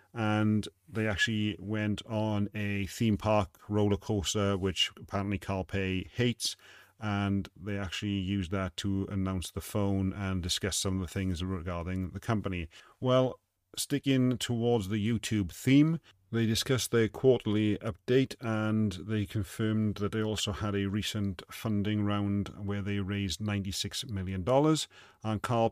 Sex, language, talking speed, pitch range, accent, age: male, English, 145 wpm, 100-110 Hz, British, 40-59